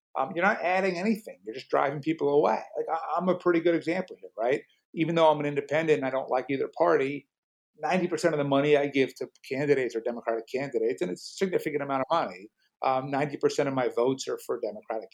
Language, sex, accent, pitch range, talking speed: English, male, American, 135-180 Hz, 220 wpm